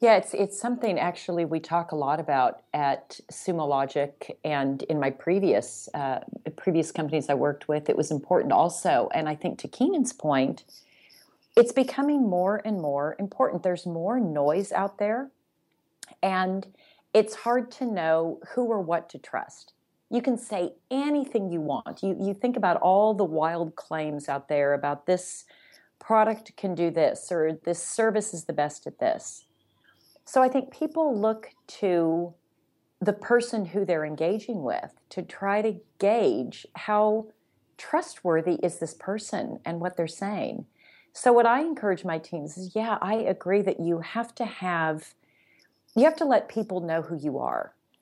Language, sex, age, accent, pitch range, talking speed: English, female, 40-59, American, 160-220 Hz, 165 wpm